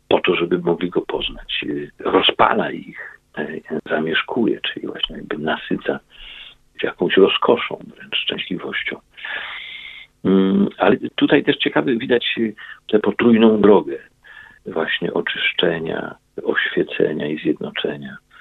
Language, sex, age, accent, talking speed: Polish, male, 50-69, native, 100 wpm